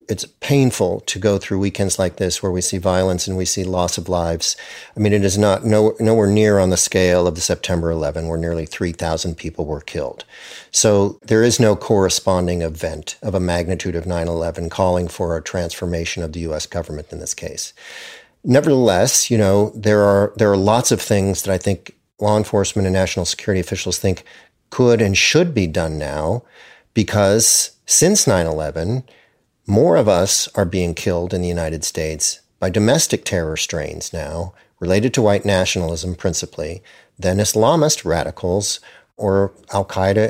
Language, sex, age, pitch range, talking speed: English, male, 50-69, 90-105 Hz, 170 wpm